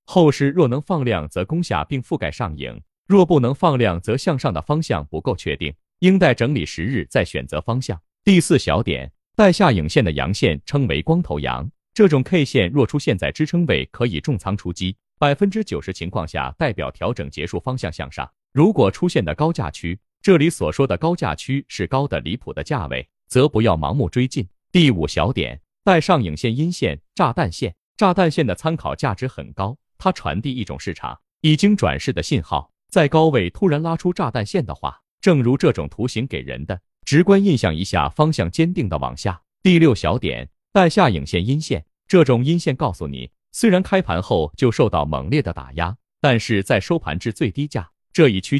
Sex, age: male, 30-49